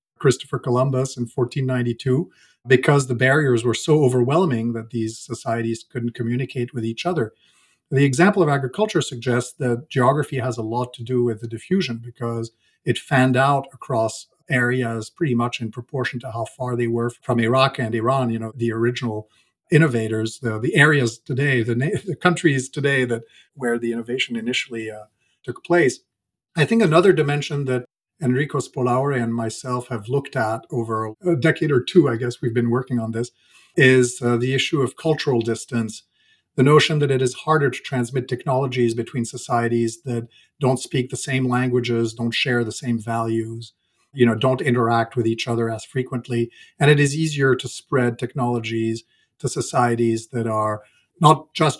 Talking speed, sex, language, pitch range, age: 175 wpm, male, English, 115-135 Hz, 50-69